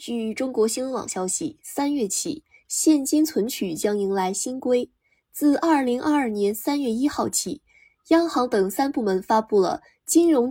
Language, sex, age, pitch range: Chinese, female, 20-39, 205-295 Hz